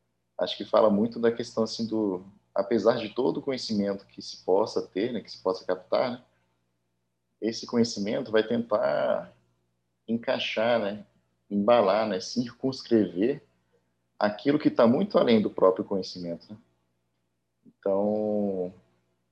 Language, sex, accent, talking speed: Portuguese, male, Brazilian, 130 wpm